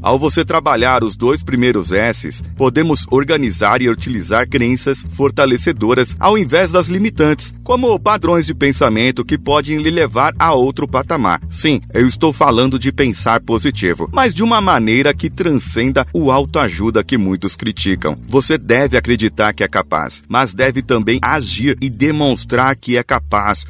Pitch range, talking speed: 115-160 Hz, 155 wpm